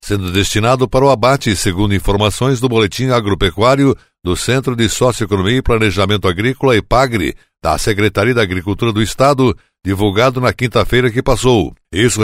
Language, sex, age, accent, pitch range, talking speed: Portuguese, male, 60-79, Brazilian, 100-130 Hz, 145 wpm